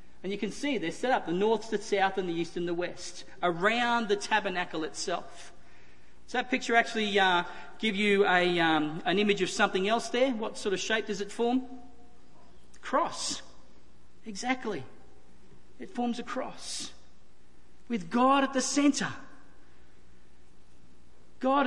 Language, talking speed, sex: English, 155 wpm, male